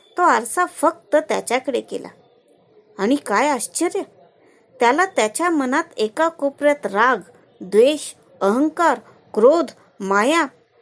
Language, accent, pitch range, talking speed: Marathi, native, 215-330 Hz, 100 wpm